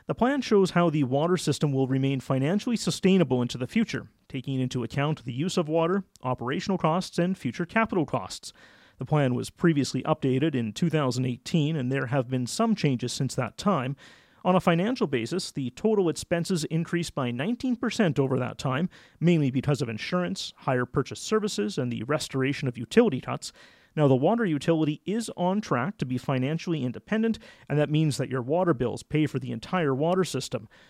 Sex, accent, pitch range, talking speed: male, American, 130-185 Hz, 180 wpm